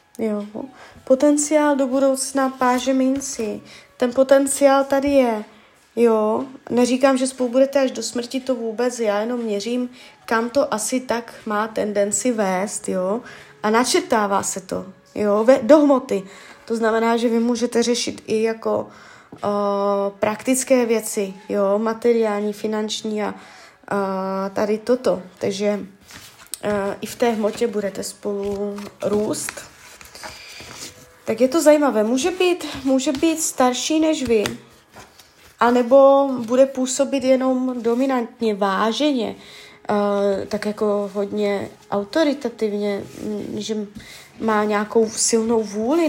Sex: female